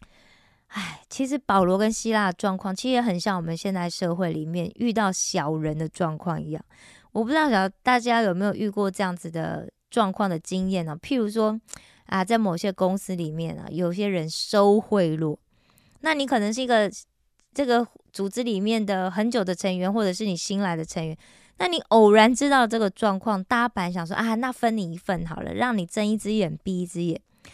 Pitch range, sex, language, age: 185-245 Hz, female, Korean, 20-39